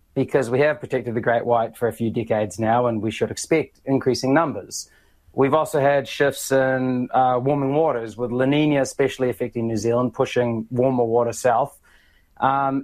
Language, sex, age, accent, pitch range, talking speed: English, male, 20-39, Australian, 120-140 Hz, 180 wpm